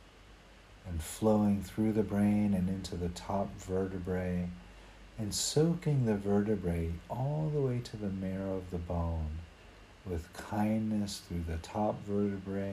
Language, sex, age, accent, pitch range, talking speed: English, male, 50-69, American, 90-105 Hz, 135 wpm